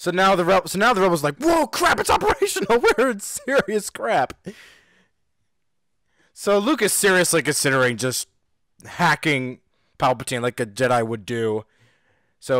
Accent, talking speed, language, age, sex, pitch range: American, 150 wpm, English, 20-39, male, 120-170 Hz